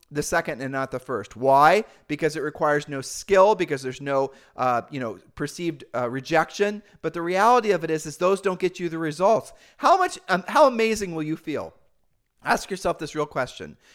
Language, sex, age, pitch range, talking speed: English, male, 30-49, 135-185 Hz, 200 wpm